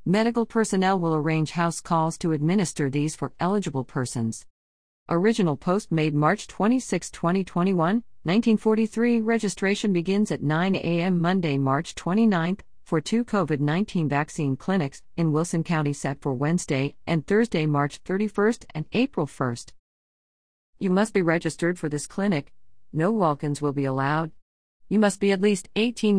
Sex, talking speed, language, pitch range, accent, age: female, 145 wpm, English, 145-205 Hz, American, 40-59